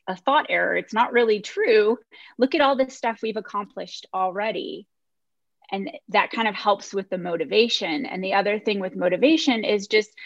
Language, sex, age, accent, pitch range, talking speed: English, female, 20-39, American, 180-220 Hz, 180 wpm